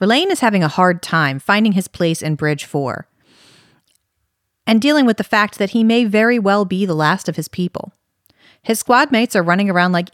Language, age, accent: English, 40-59, American